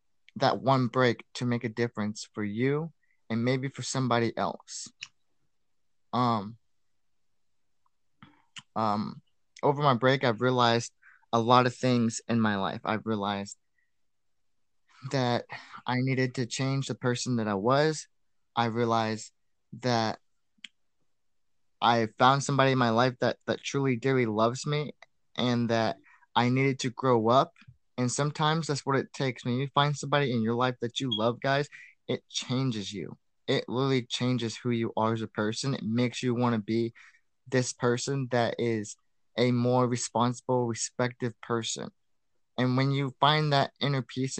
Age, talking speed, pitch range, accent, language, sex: 20-39, 155 wpm, 115-135 Hz, American, English, male